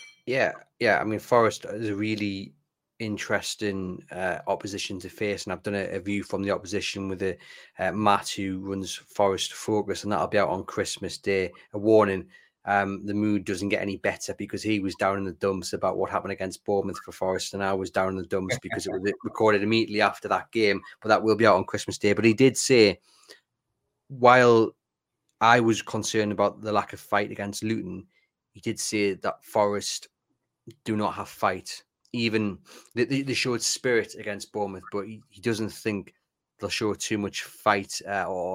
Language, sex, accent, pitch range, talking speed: English, male, British, 100-115 Hz, 190 wpm